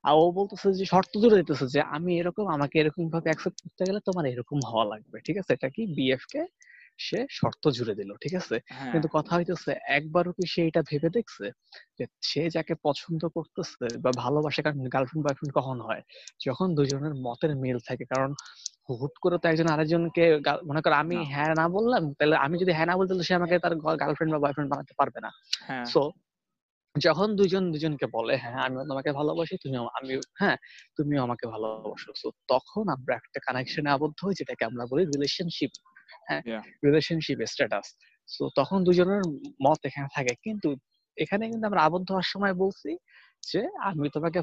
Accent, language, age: native, Hindi, 20-39